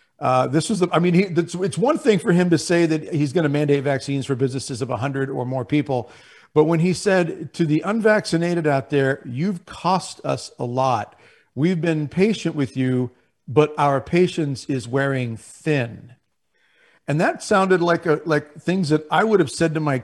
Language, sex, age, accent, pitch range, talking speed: English, male, 50-69, American, 135-175 Hz, 200 wpm